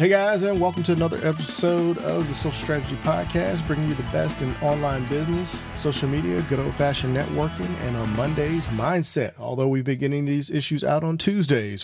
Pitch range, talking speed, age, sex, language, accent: 110-150 Hz, 190 wpm, 40-59, male, English, American